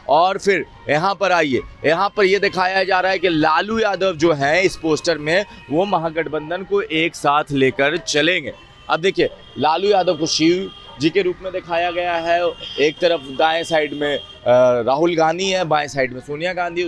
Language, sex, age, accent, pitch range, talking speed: Hindi, male, 30-49, native, 150-185 Hz, 190 wpm